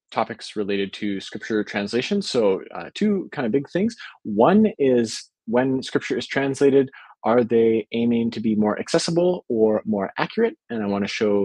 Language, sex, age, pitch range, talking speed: English, male, 20-39, 110-145 Hz, 175 wpm